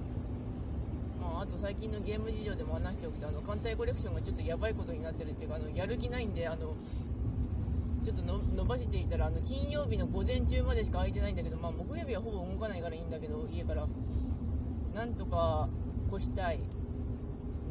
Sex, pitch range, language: female, 80-105 Hz, Japanese